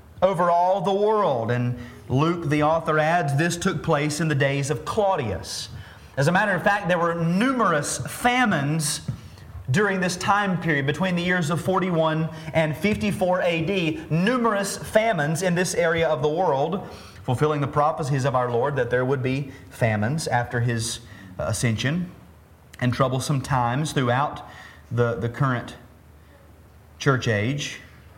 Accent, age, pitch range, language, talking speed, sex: American, 30-49, 125-180 Hz, English, 145 wpm, male